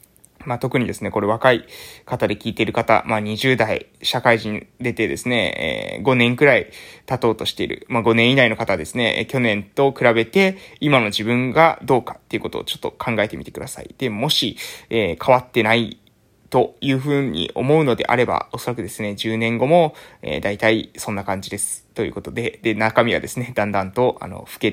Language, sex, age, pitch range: Japanese, male, 20-39, 115-155 Hz